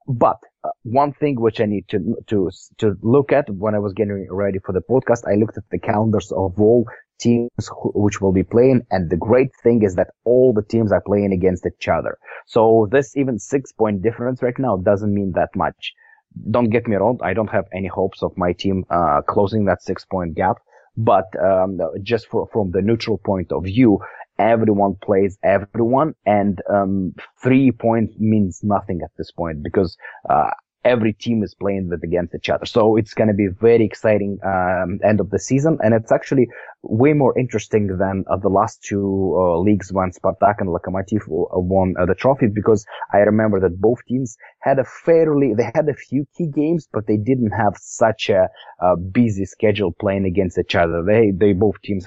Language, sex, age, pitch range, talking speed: English, male, 30-49, 95-115 Hz, 200 wpm